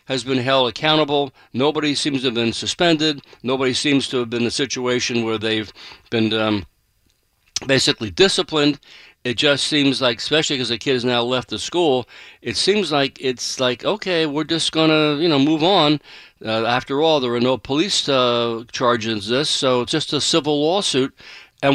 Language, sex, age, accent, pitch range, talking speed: English, male, 60-79, American, 125-155 Hz, 185 wpm